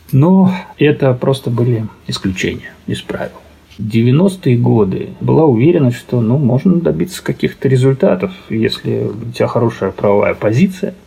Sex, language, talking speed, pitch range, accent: male, Russian, 130 wpm, 110-150 Hz, native